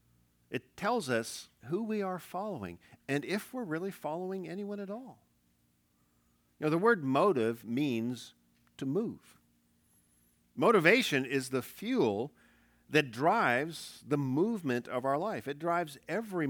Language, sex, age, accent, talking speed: English, male, 50-69, American, 135 wpm